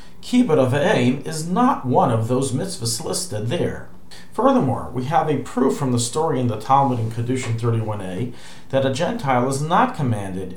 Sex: male